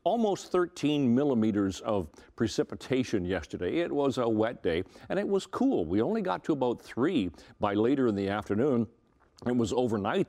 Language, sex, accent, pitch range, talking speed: English, male, American, 100-135 Hz, 170 wpm